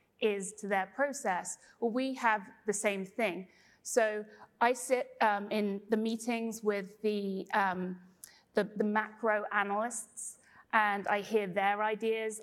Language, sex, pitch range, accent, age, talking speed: English, female, 205-235 Hz, British, 30-49, 140 wpm